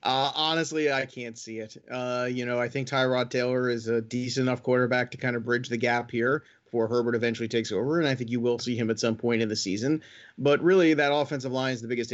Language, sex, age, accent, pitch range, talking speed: English, male, 30-49, American, 120-150 Hz, 250 wpm